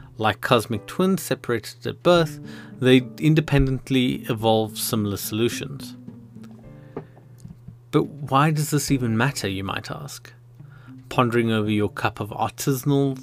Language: English